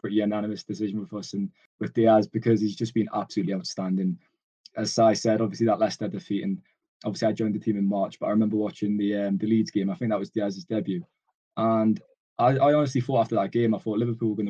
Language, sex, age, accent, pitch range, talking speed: English, male, 20-39, British, 100-120 Hz, 235 wpm